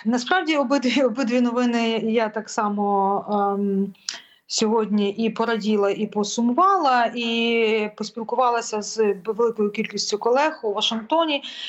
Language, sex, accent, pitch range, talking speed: Ukrainian, female, native, 210-250 Hz, 110 wpm